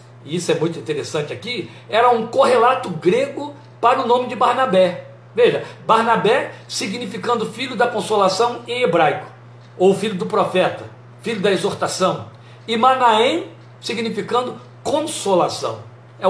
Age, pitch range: 60-79, 145-225 Hz